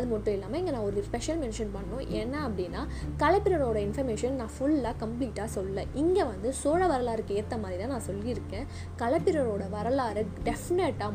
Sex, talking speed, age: female, 155 wpm, 20-39